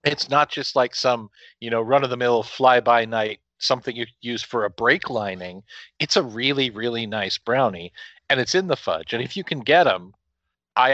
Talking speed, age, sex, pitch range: 185 wpm, 40-59, male, 105-145 Hz